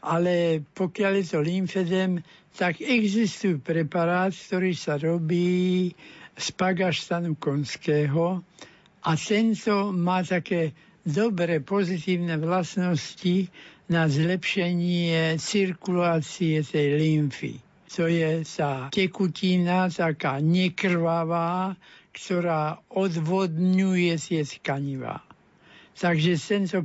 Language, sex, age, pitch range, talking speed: Slovak, male, 60-79, 165-185 Hz, 85 wpm